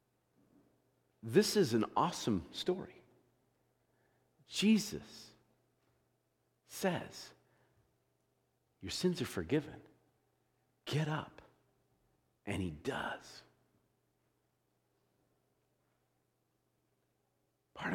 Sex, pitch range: male, 110-145 Hz